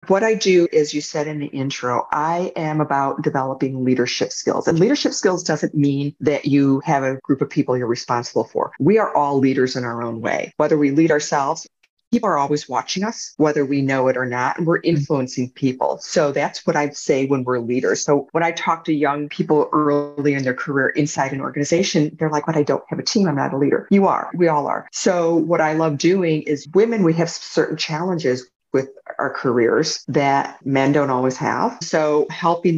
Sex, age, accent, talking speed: female, 40-59, American, 215 wpm